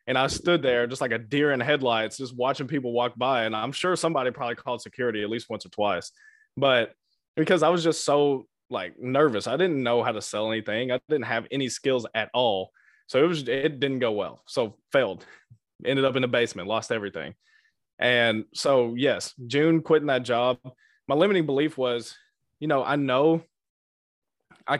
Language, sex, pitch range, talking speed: English, male, 115-150 Hz, 195 wpm